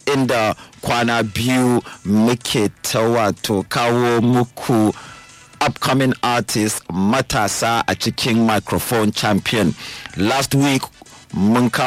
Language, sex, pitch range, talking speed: English, male, 105-125 Hz, 85 wpm